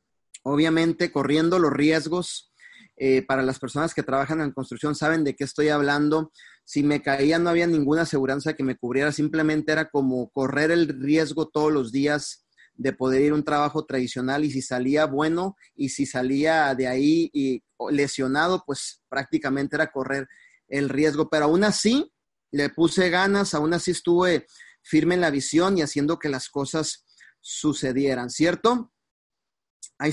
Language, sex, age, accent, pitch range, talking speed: Spanish, male, 30-49, Mexican, 140-165 Hz, 160 wpm